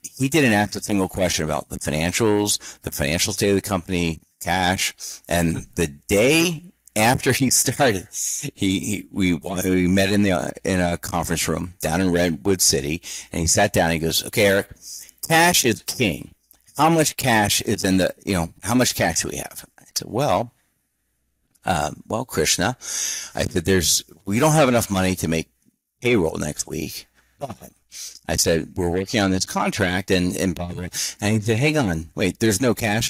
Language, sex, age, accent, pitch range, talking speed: English, male, 50-69, American, 90-125 Hz, 180 wpm